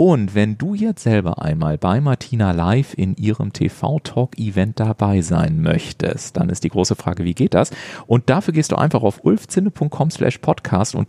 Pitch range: 100-135 Hz